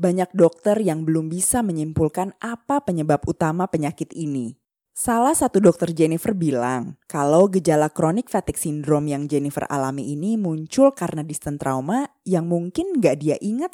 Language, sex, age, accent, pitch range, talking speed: Indonesian, female, 20-39, native, 150-195 Hz, 150 wpm